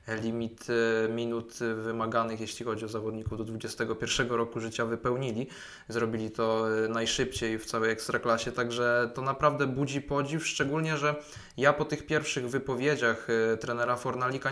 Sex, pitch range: male, 120-135 Hz